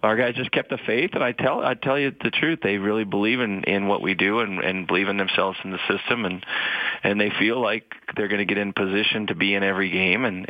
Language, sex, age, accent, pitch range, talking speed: English, male, 30-49, American, 95-110 Hz, 270 wpm